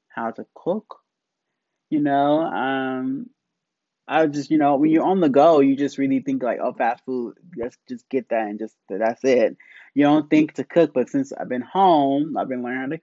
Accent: American